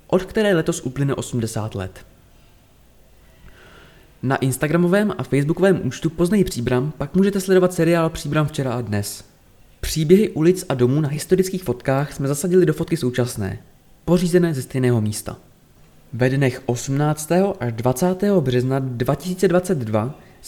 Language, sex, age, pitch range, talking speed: Czech, male, 20-39, 125-180 Hz, 130 wpm